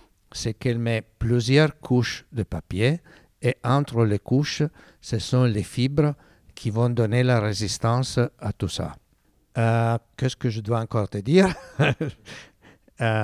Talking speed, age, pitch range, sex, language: 145 wpm, 60-79, 105-130 Hz, male, French